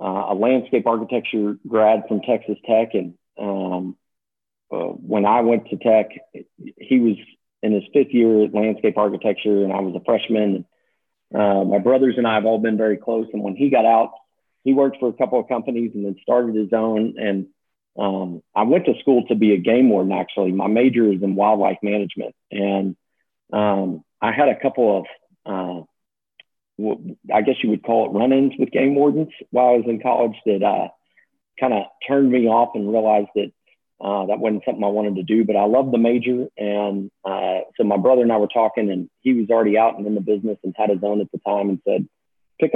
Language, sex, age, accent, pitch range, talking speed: English, male, 40-59, American, 100-115 Hz, 210 wpm